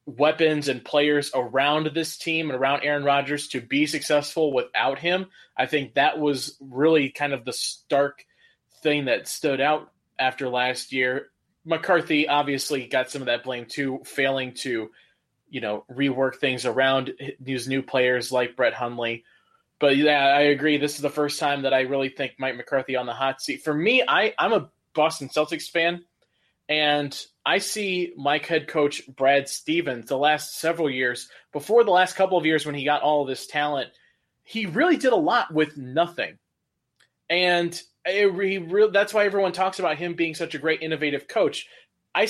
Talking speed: 180 wpm